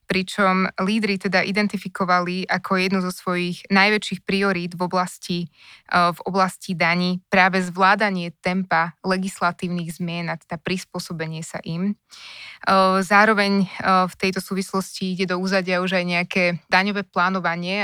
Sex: female